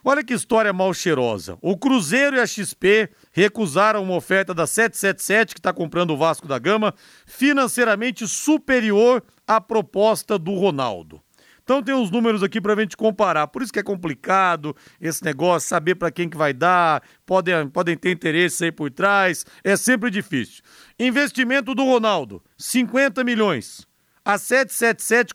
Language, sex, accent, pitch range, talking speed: Portuguese, male, Brazilian, 170-245 Hz, 160 wpm